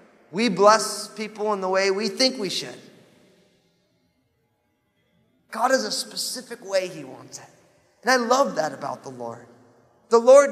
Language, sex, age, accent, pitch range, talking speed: English, male, 30-49, American, 140-190 Hz, 155 wpm